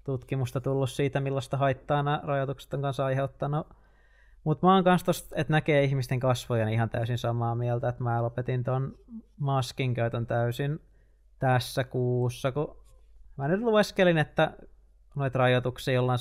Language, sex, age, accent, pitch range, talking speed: Finnish, male, 20-39, native, 120-140 Hz, 150 wpm